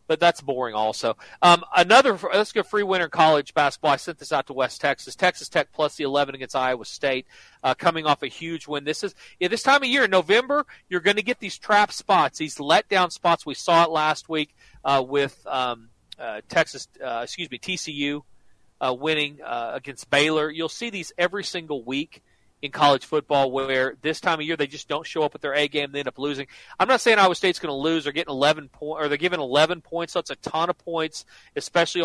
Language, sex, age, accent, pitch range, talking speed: English, male, 40-59, American, 140-180 Hz, 230 wpm